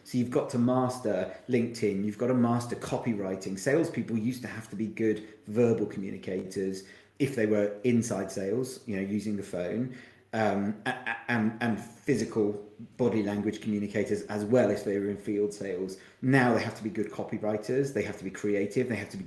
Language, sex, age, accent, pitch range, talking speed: English, male, 30-49, British, 105-125 Hz, 195 wpm